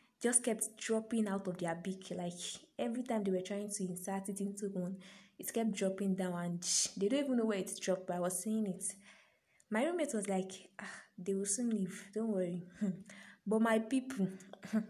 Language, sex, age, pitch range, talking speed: English, female, 20-39, 190-230 Hz, 195 wpm